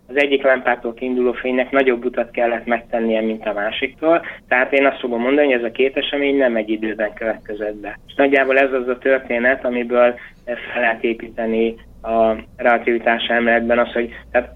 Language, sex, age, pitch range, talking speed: Hungarian, male, 20-39, 120-135 Hz, 175 wpm